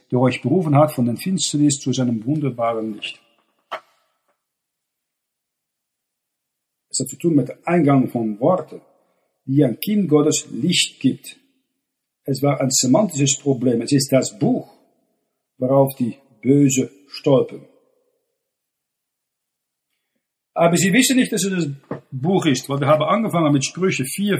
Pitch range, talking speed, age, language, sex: 135-175 Hz, 135 wpm, 50-69, German, male